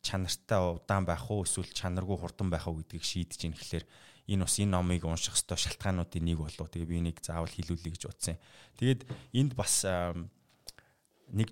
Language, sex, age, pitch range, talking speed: English, male, 20-39, 85-110 Hz, 145 wpm